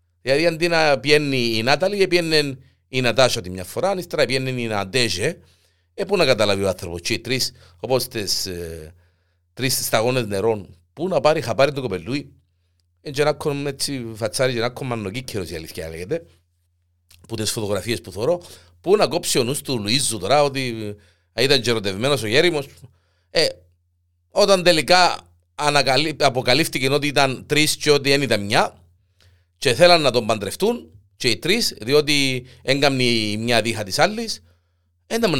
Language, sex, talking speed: Greek, male, 100 wpm